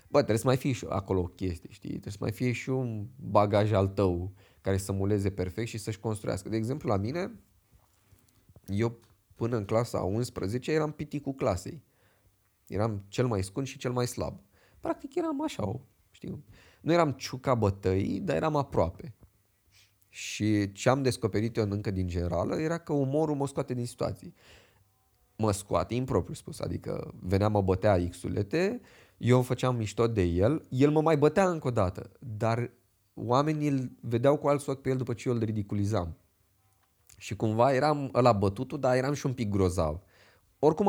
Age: 20-39